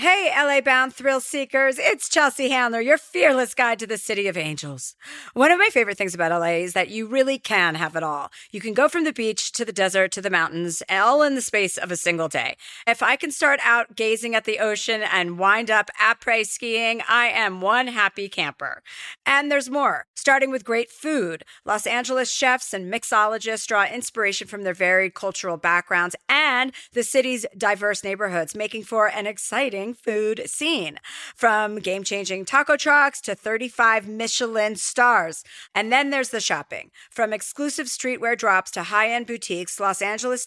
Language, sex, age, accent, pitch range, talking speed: English, female, 40-59, American, 195-260 Hz, 180 wpm